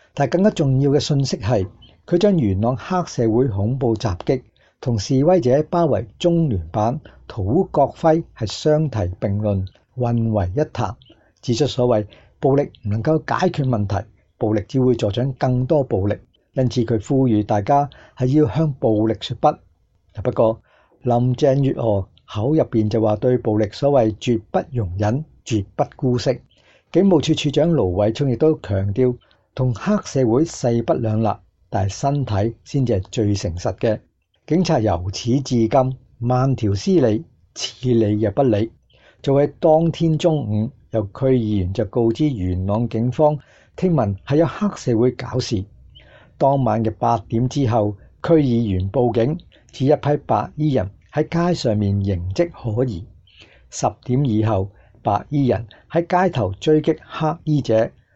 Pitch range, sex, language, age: 105-145 Hz, male, English, 50-69